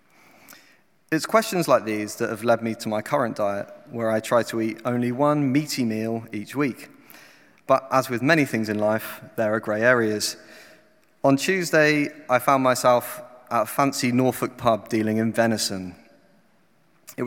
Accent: British